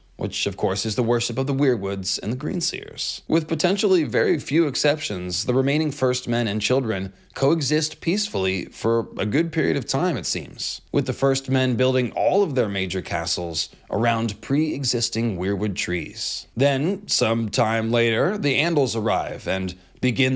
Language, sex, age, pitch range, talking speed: English, male, 20-39, 105-135 Hz, 165 wpm